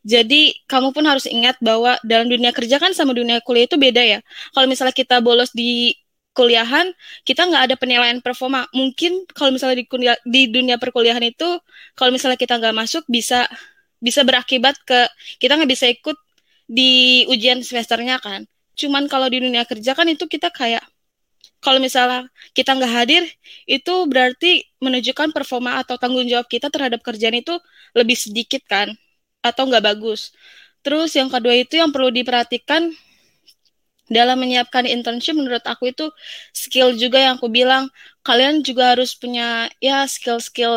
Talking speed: 155 wpm